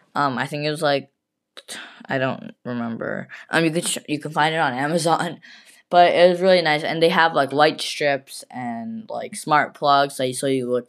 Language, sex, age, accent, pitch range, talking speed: English, female, 10-29, American, 130-170 Hz, 210 wpm